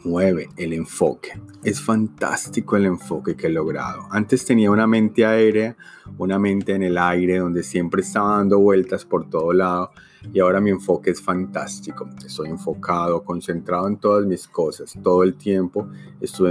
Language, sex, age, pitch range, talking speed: Spanish, male, 30-49, 85-100 Hz, 165 wpm